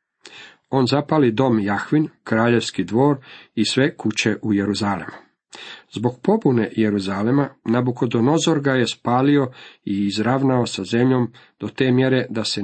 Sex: male